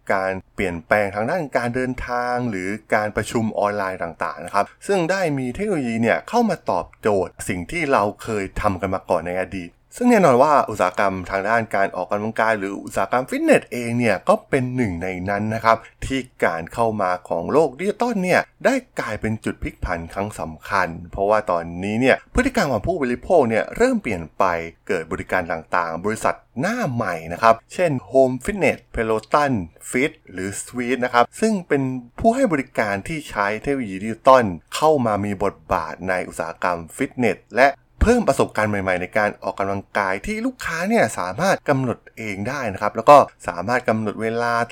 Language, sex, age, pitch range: Thai, male, 20-39, 100-140 Hz